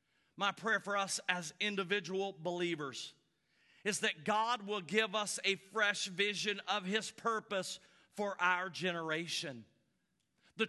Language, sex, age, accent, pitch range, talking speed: English, male, 50-69, American, 155-220 Hz, 130 wpm